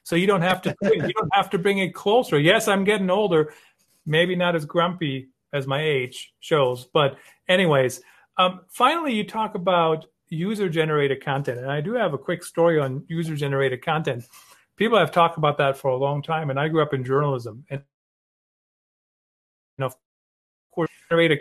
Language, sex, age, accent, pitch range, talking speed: English, male, 40-59, American, 140-180 Hz, 180 wpm